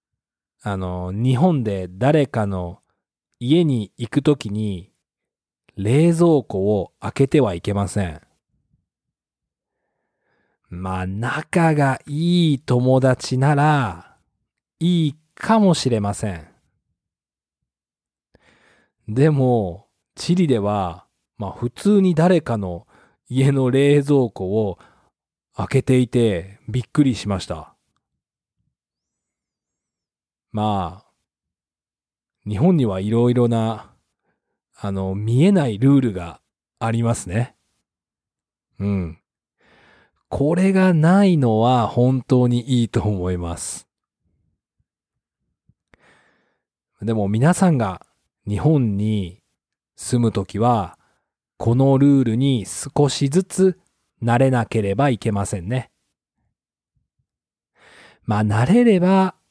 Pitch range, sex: 100-140 Hz, male